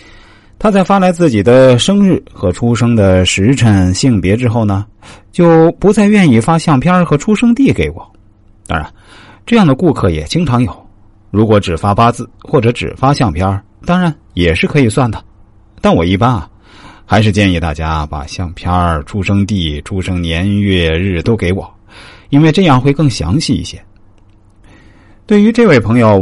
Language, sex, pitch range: Chinese, male, 95-125 Hz